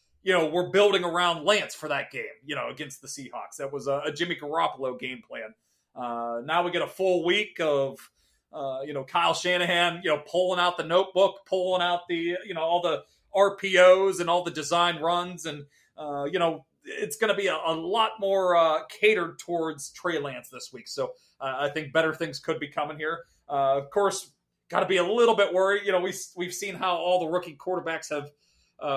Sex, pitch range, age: male, 140-180 Hz, 30-49